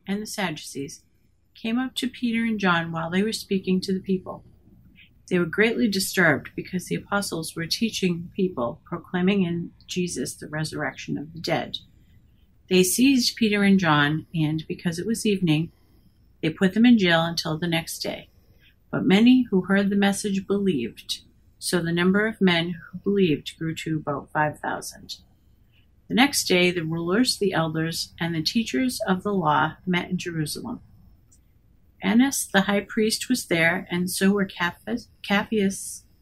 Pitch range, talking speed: 155-200 Hz, 160 wpm